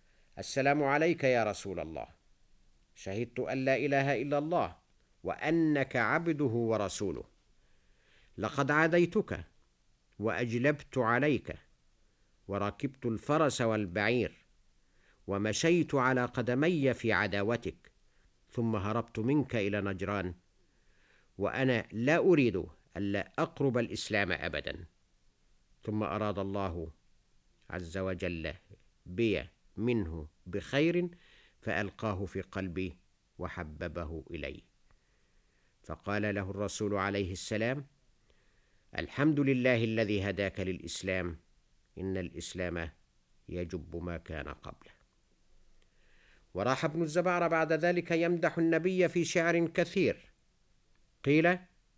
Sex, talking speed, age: male, 90 wpm, 50-69